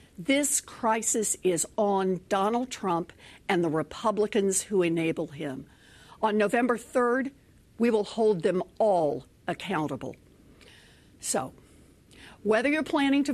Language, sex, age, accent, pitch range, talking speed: English, female, 60-79, American, 170-225 Hz, 115 wpm